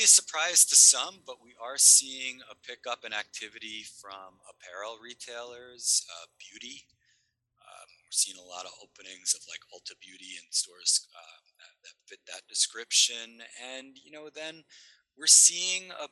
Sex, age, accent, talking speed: male, 30-49, American, 155 wpm